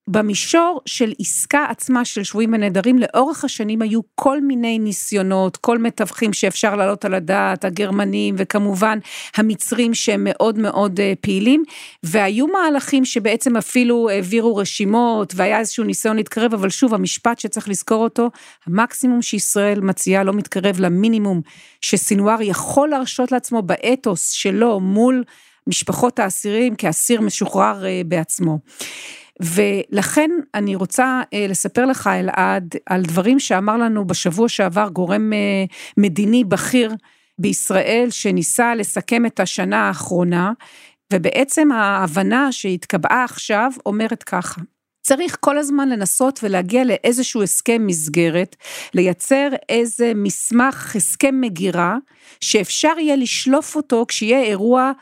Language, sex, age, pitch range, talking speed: Hebrew, female, 40-59, 195-245 Hz, 115 wpm